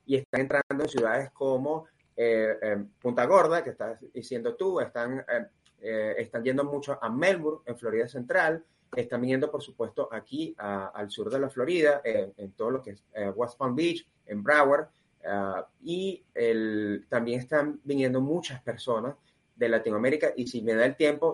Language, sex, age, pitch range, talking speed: Spanish, male, 30-49, 120-155 Hz, 165 wpm